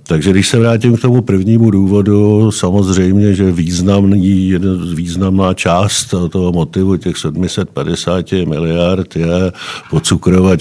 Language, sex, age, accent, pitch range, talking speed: Czech, male, 50-69, native, 90-105 Hz, 115 wpm